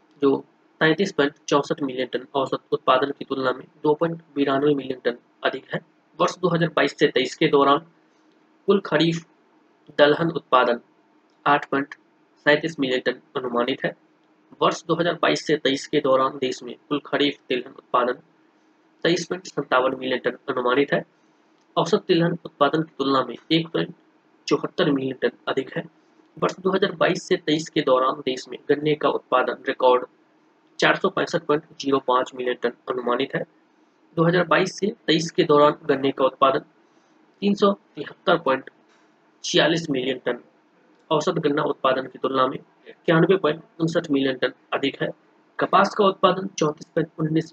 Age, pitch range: 20-39, 135-170 Hz